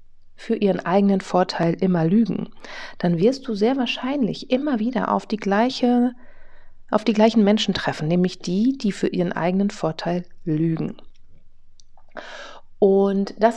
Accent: German